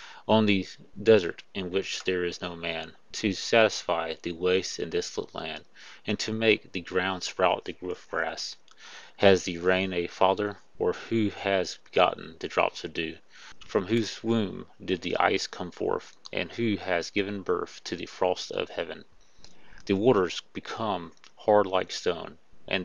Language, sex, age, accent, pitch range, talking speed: English, male, 30-49, American, 90-105 Hz, 165 wpm